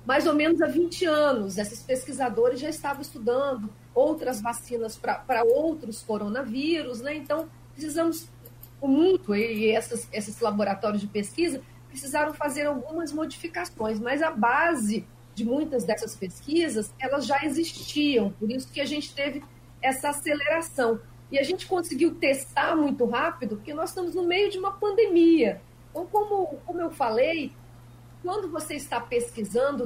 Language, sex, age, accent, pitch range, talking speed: Portuguese, female, 40-59, Brazilian, 230-330 Hz, 145 wpm